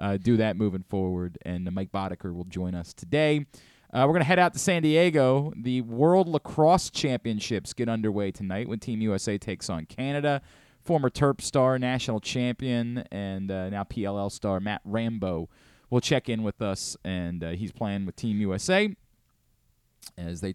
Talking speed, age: 175 wpm, 20-39